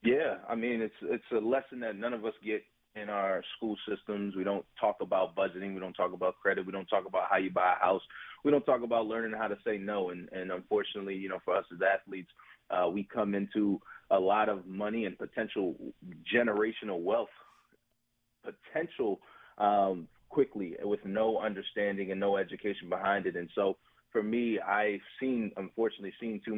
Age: 30-49